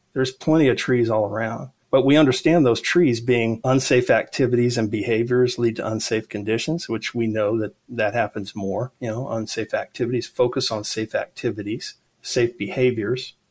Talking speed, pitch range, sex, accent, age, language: 165 wpm, 115-130 Hz, male, American, 40-59, English